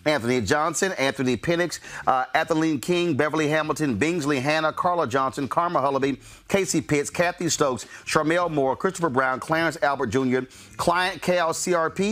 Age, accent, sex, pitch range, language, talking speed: 40-59, American, male, 135-170 Hz, English, 140 wpm